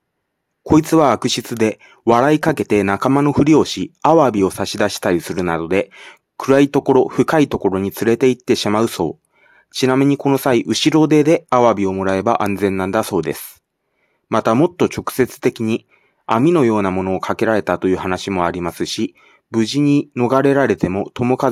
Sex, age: male, 30-49